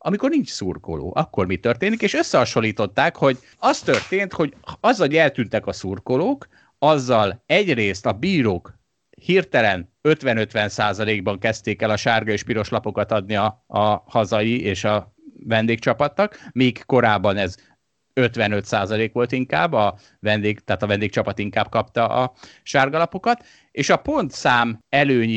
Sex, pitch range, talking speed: male, 105-140 Hz, 135 wpm